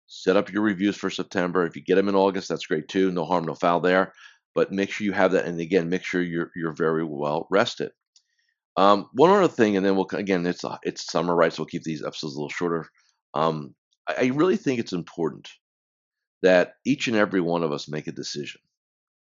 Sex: male